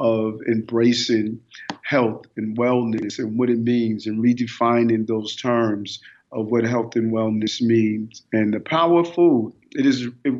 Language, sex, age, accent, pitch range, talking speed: English, male, 50-69, American, 115-125 Hz, 150 wpm